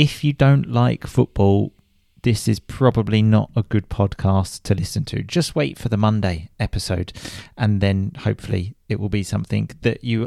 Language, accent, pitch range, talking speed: English, British, 105-140 Hz, 175 wpm